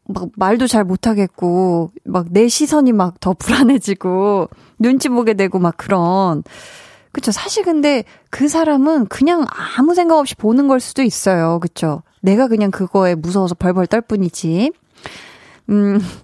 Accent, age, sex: native, 20-39, female